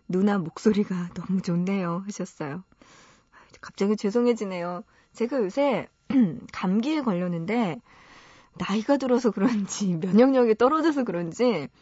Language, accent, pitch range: Korean, native, 175-245 Hz